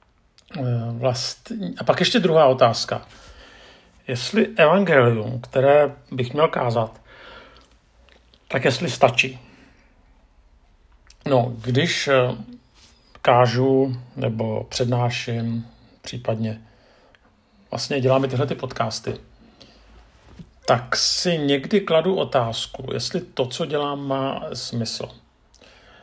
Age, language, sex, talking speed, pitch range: 50-69, Czech, male, 85 wpm, 115-135 Hz